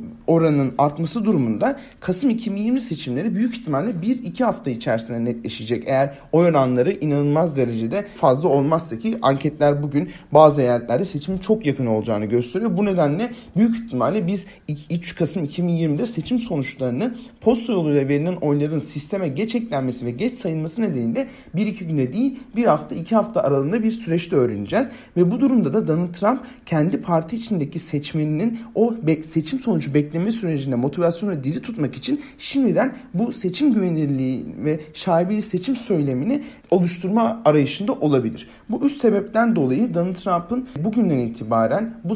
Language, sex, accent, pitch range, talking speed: Turkish, male, native, 145-225 Hz, 140 wpm